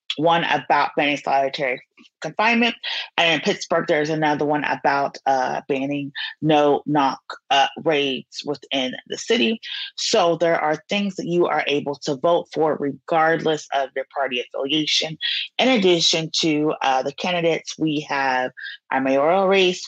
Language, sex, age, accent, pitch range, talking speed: English, female, 30-49, American, 150-190 Hz, 145 wpm